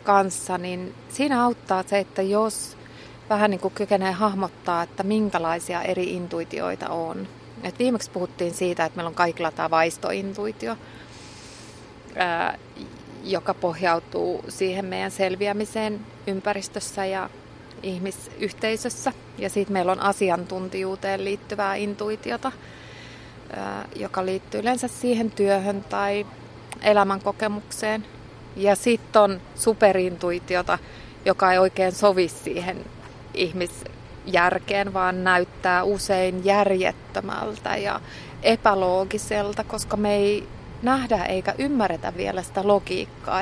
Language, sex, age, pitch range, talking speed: Finnish, female, 30-49, 180-215 Hz, 105 wpm